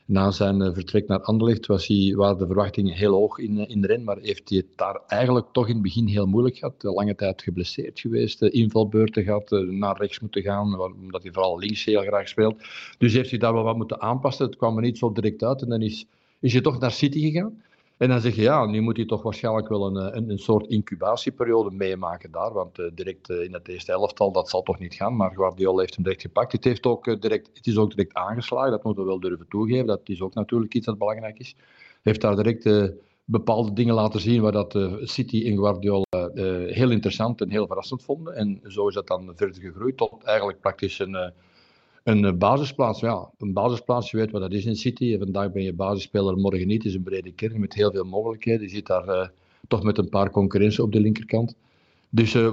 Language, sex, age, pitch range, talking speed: Dutch, male, 50-69, 100-115 Hz, 235 wpm